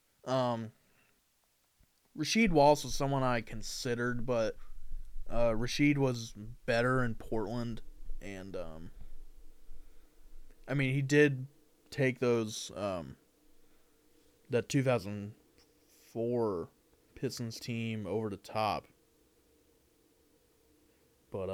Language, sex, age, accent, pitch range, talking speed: English, male, 20-39, American, 110-150 Hz, 85 wpm